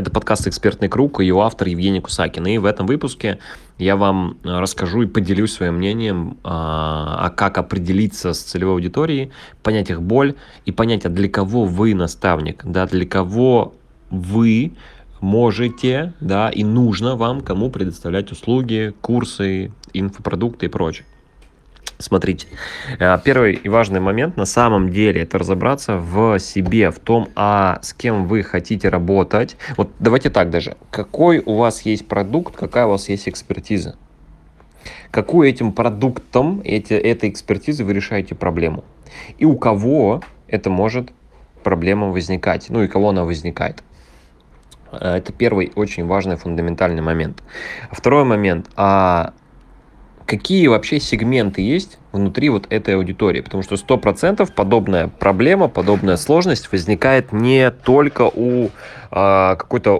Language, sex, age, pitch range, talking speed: Russian, male, 20-39, 95-115 Hz, 135 wpm